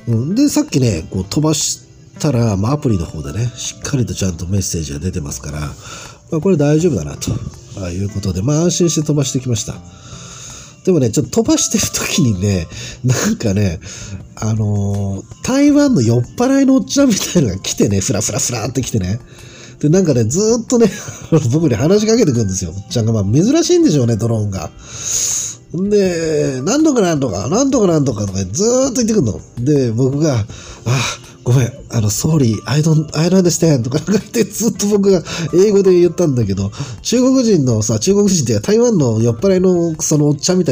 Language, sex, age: Japanese, male, 40-59